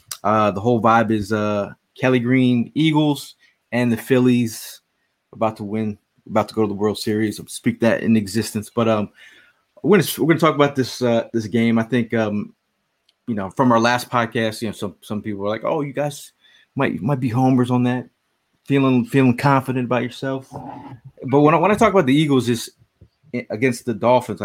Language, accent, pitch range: English, American, 105-125 Hz